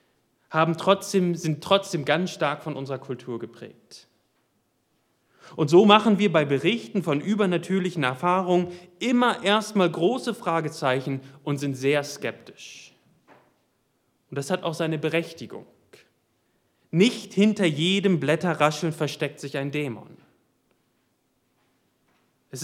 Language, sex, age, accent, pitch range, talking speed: German, male, 30-49, German, 145-190 Hz, 110 wpm